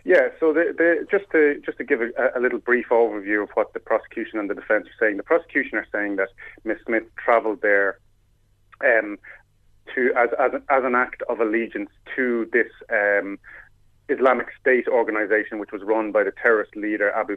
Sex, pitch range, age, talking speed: male, 105-135 Hz, 30-49, 195 wpm